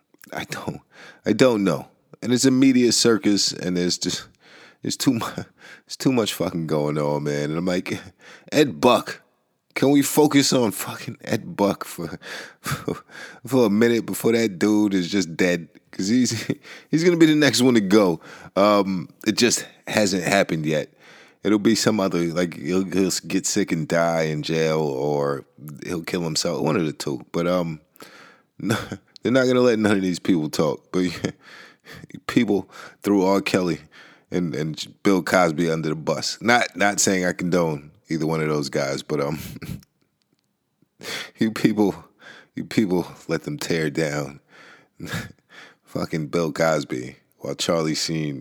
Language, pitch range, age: English, 75-105 Hz, 20-39